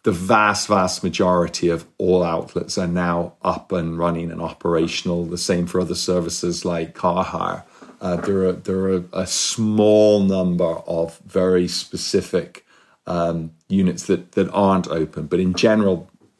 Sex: male